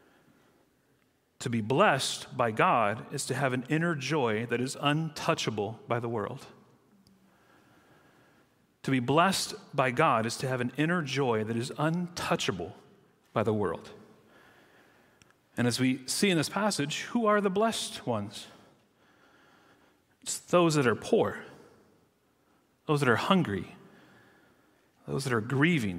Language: English